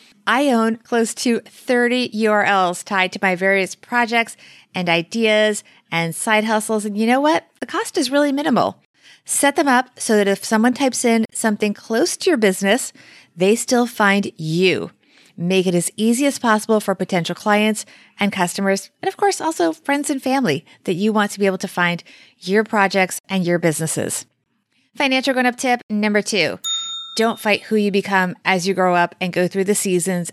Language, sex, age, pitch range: English, female, 30-49, 190-255 Hz